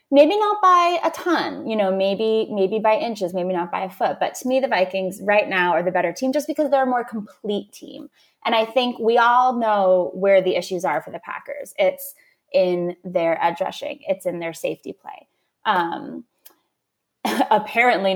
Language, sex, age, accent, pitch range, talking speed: English, female, 20-39, American, 180-265 Hz, 190 wpm